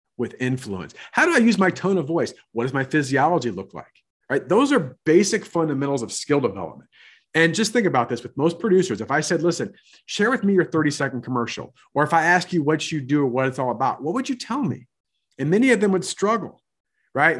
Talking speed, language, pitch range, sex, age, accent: 235 wpm, English, 130-190 Hz, male, 40-59, American